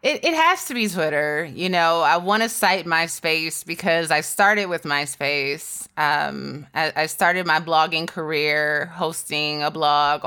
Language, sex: English, female